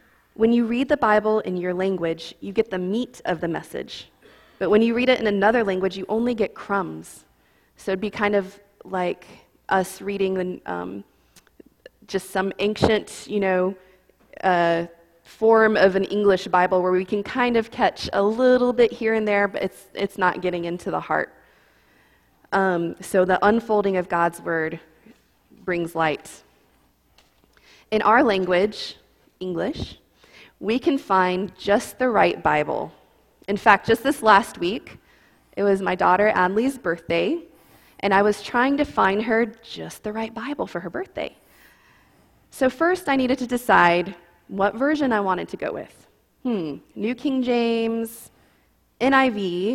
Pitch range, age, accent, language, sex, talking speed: 185-230 Hz, 20-39, American, English, female, 160 wpm